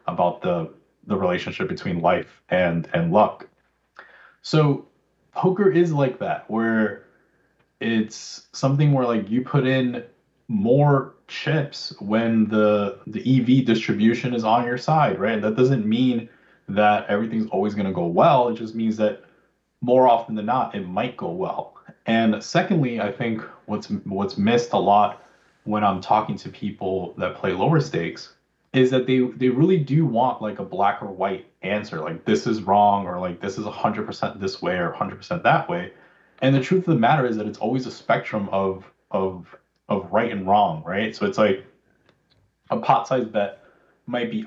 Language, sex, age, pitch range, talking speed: English, male, 20-39, 105-135 Hz, 175 wpm